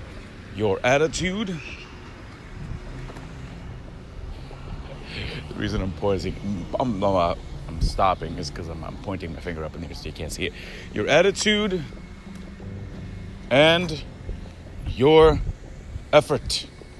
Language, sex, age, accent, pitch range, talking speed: English, male, 30-49, American, 90-130 Hz, 105 wpm